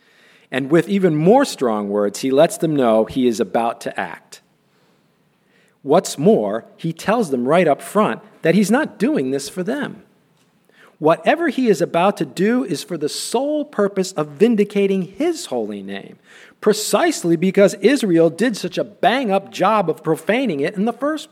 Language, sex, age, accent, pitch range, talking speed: English, male, 50-69, American, 165-230 Hz, 170 wpm